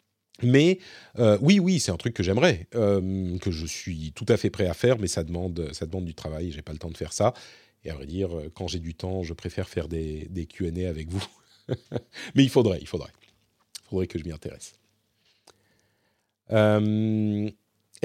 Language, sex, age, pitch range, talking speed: French, male, 40-59, 95-120 Hz, 205 wpm